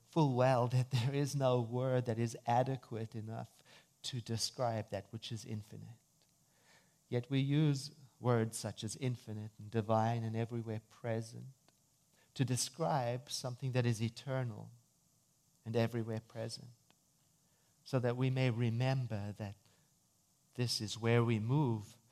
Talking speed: 135 wpm